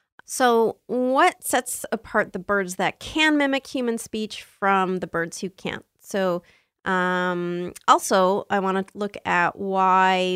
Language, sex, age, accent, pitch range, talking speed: English, female, 30-49, American, 185-230 Hz, 145 wpm